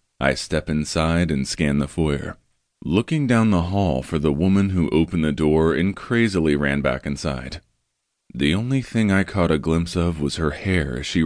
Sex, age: male, 30-49